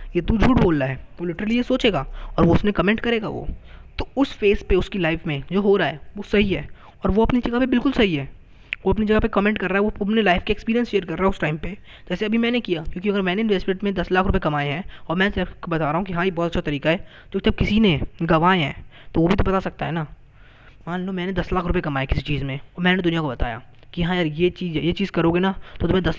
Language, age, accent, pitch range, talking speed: Hindi, 20-39, native, 155-205 Hz, 290 wpm